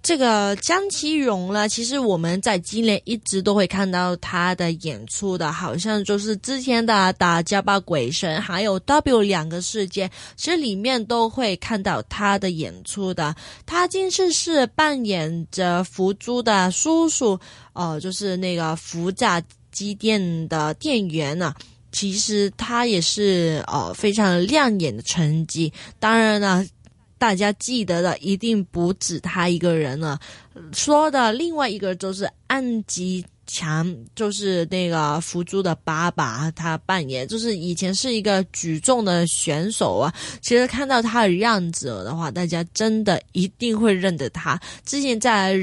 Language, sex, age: Chinese, female, 20-39